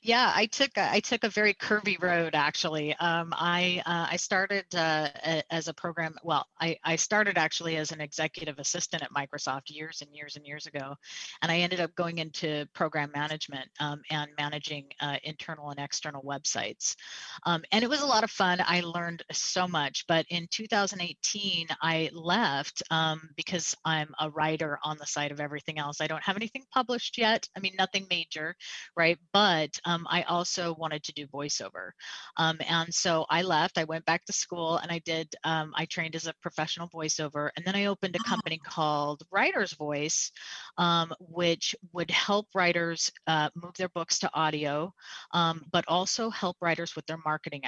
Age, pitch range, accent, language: 30-49, 150-175 Hz, American, English